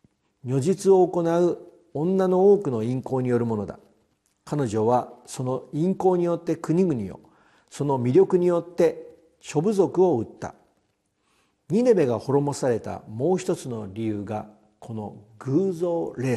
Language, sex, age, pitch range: Japanese, male, 50-69, 115-170 Hz